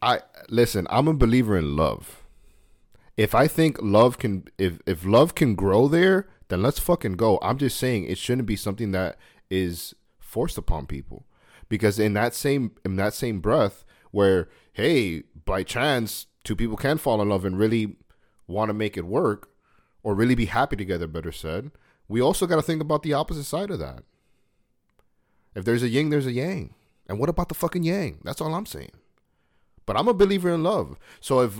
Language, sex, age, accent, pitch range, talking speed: English, male, 30-49, American, 95-135 Hz, 195 wpm